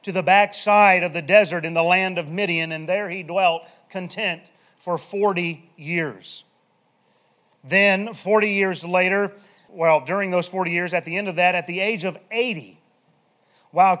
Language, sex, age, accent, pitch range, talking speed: English, male, 40-59, American, 165-205 Hz, 170 wpm